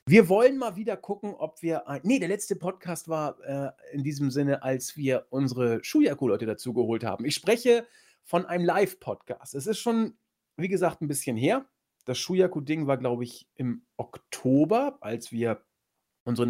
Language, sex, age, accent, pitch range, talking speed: German, male, 40-59, German, 130-185 Hz, 175 wpm